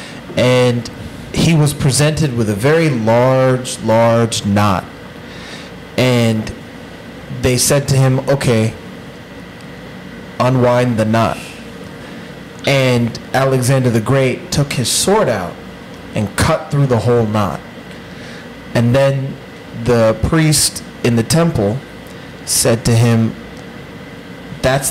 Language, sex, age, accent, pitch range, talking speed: English, male, 30-49, American, 115-140 Hz, 105 wpm